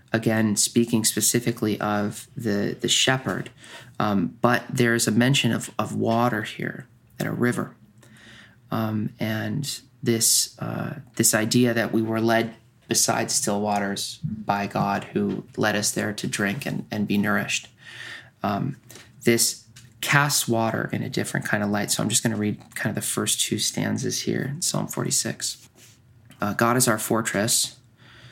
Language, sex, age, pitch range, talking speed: English, male, 20-39, 110-120 Hz, 160 wpm